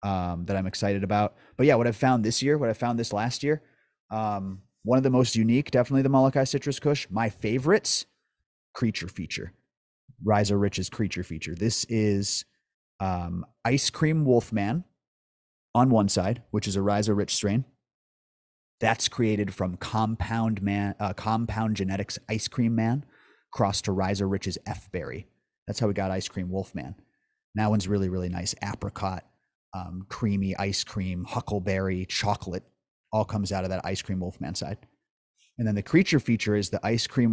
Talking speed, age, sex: 170 wpm, 30-49, male